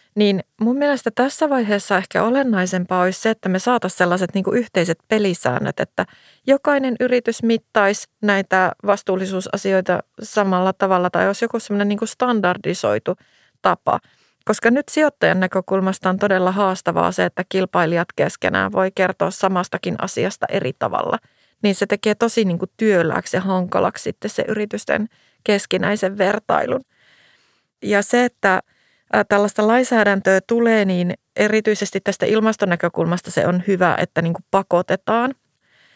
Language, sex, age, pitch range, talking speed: Finnish, female, 30-49, 180-210 Hz, 125 wpm